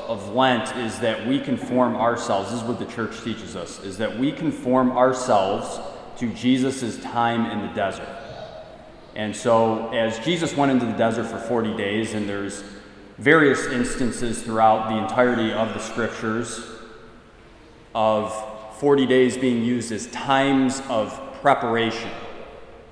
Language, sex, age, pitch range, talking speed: English, male, 20-39, 105-125 Hz, 145 wpm